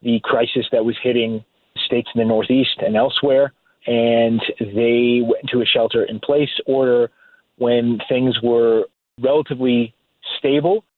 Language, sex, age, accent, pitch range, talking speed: English, male, 30-49, American, 120-150 Hz, 135 wpm